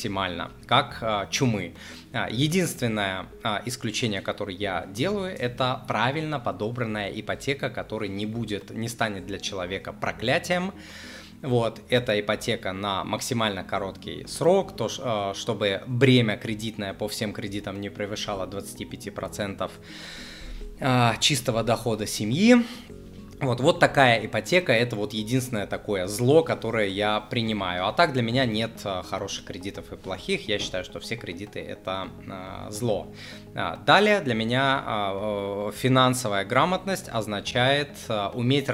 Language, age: Russian, 20-39